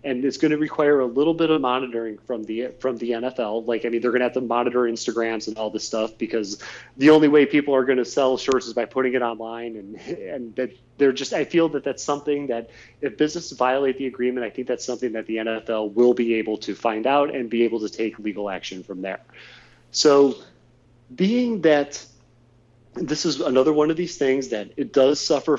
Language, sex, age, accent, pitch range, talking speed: English, male, 30-49, American, 115-150 Hz, 225 wpm